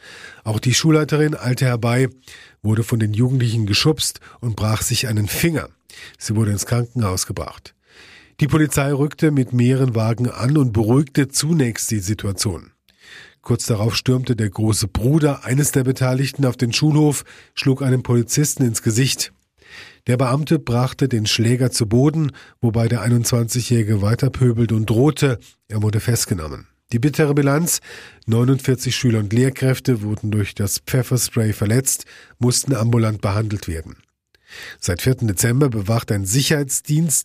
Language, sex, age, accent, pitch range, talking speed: German, male, 40-59, German, 110-135 Hz, 140 wpm